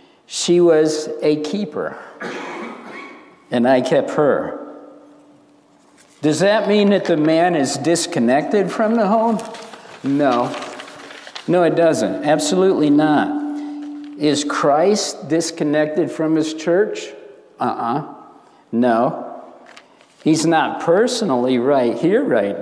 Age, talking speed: 60-79, 105 wpm